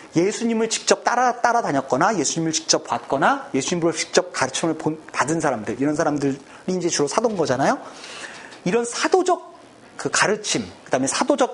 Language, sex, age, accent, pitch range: Korean, male, 30-49, native, 145-240 Hz